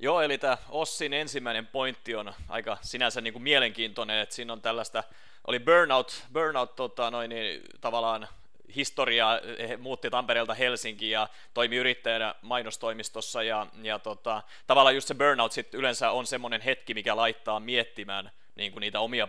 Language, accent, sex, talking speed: Finnish, native, male, 150 wpm